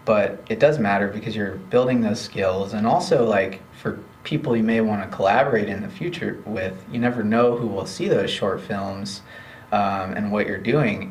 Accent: American